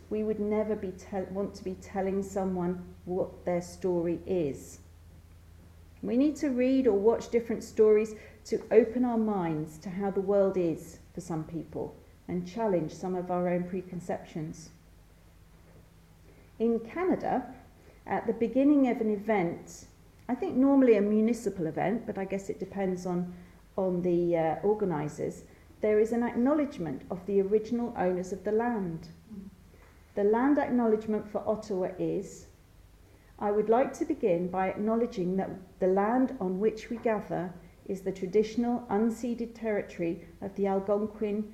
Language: English